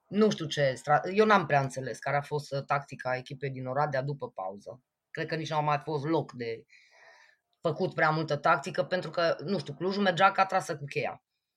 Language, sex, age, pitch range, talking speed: Romanian, female, 20-39, 145-180 Hz, 200 wpm